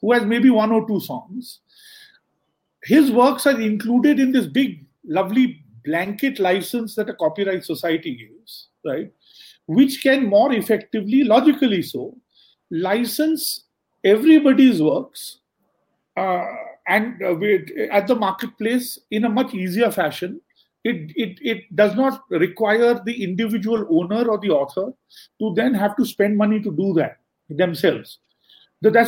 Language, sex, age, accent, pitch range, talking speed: English, male, 40-59, Indian, 200-260 Hz, 135 wpm